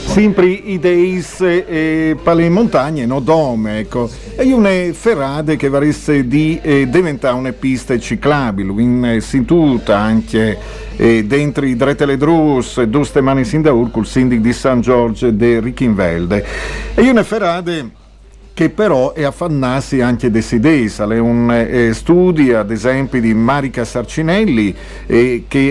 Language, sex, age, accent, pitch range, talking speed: Italian, male, 50-69, native, 120-160 Hz, 135 wpm